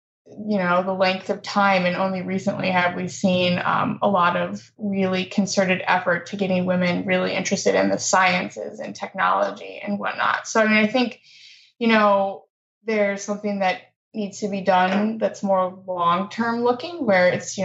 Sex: female